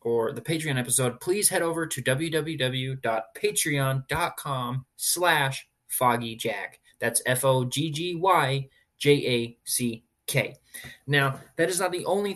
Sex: male